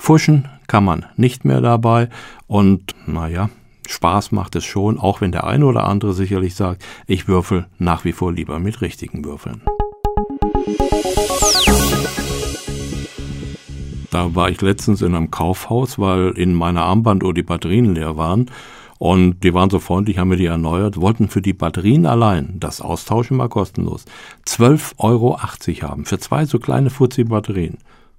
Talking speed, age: 150 wpm, 60-79